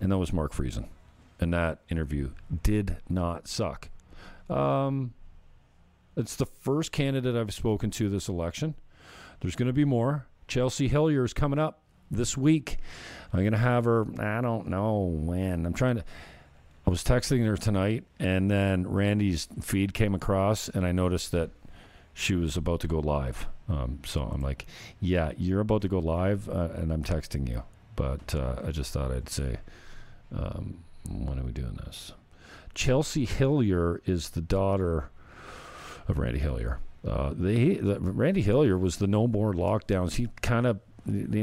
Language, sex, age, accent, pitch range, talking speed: English, male, 40-59, American, 80-105 Hz, 165 wpm